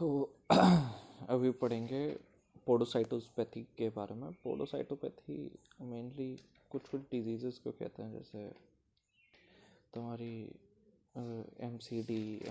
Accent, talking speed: native, 85 wpm